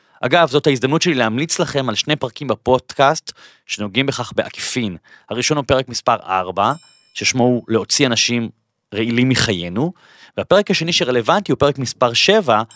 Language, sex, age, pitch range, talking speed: Hebrew, male, 30-49, 115-150 Hz, 145 wpm